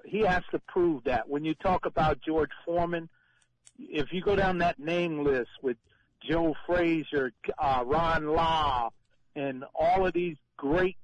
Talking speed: 160 wpm